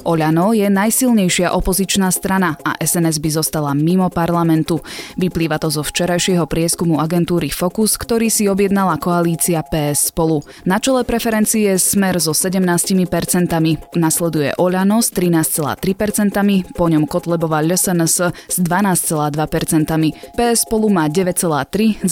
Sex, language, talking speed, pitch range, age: female, Slovak, 120 wpm, 160-195 Hz, 20-39